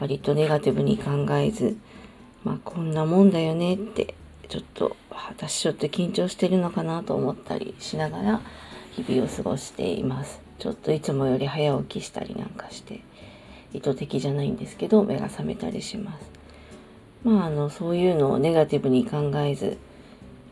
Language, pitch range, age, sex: Japanese, 145-205 Hz, 40-59, female